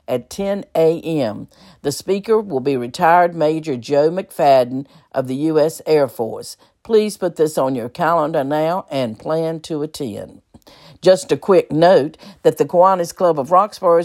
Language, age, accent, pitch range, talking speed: English, 50-69, American, 145-195 Hz, 160 wpm